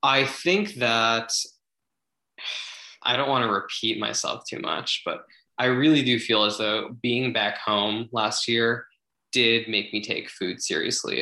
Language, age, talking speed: English, 20-39, 155 wpm